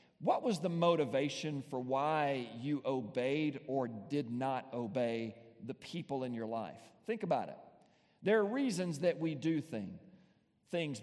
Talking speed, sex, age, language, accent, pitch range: 145 wpm, male, 50-69, English, American, 150-200 Hz